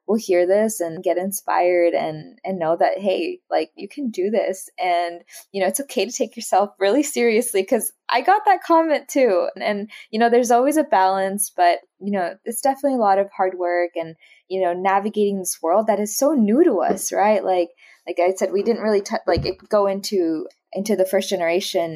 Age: 20-39